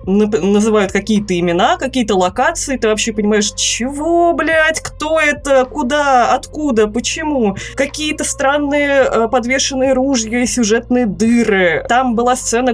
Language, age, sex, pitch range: Russian, 20-39, female, 200-245 Hz